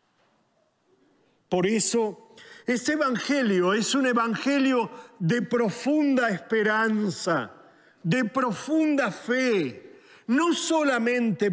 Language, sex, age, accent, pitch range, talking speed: Spanish, male, 50-69, Argentinian, 215-275 Hz, 80 wpm